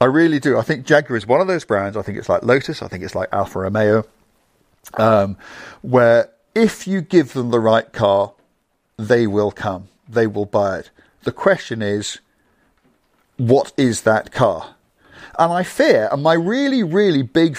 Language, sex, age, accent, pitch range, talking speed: English, male, 50-69, British, 100-135 Hz, 180 wpm